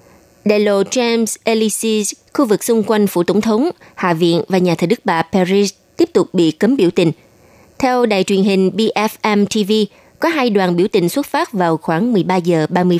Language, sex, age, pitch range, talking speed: Vietnamese, female, 20-39, 180-225 Hz, 195 wpm